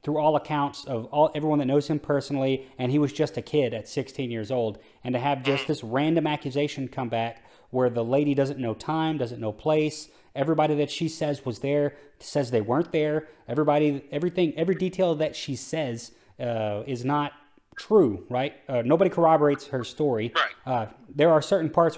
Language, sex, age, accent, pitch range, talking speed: English, male, 30-49, American, 125-155 Hz, 190 wpm